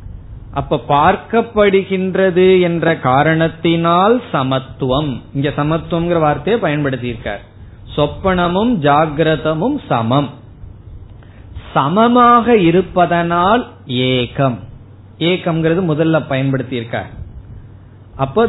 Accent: native